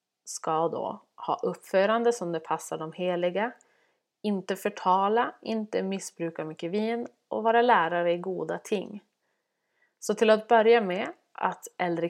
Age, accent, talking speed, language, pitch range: 30-49, native, 140 wpm, Swedish, 170-225 Hz